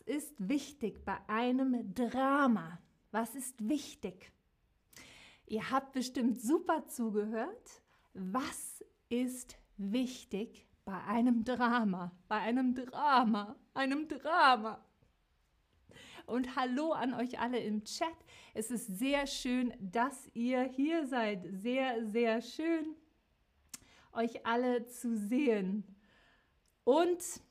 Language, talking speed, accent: German, 105 wpm, German